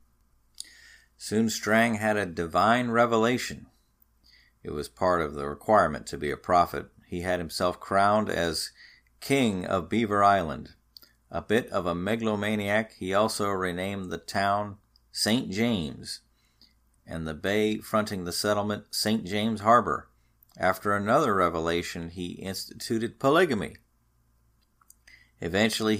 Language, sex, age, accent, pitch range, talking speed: English, male, 50-69, American, 85-110 Hz, 120 wpm